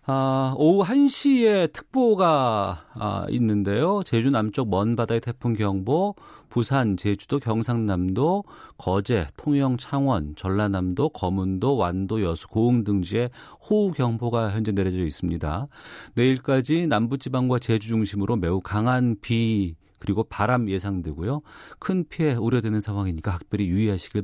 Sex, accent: male, native